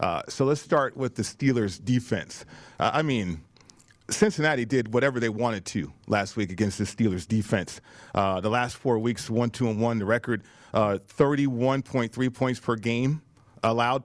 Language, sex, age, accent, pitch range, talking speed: English, male, 40-59, American, 120-150 Hz, 165 wpm